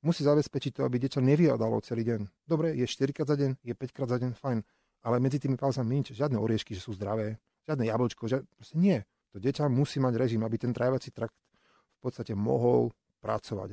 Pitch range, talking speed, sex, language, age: 110-135 Hz, 200 wpm, male, Slovak, 30-49